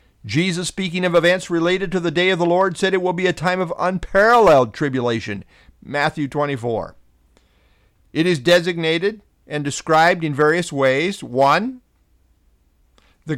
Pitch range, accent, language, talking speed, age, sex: 135-180 Hz, American, English, 145 wpm, 50-69, male